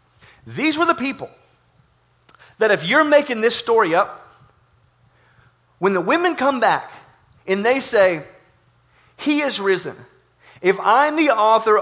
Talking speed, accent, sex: 130 wpm, American, male